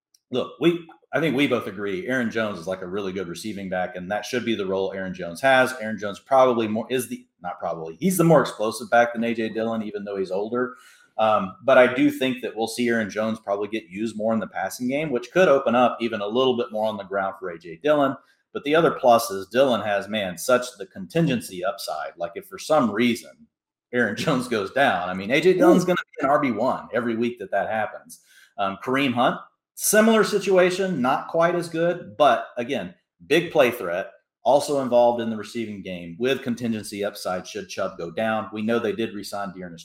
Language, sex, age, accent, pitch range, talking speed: English, male, 40-59, American, 105-130 Hz, 220 wpm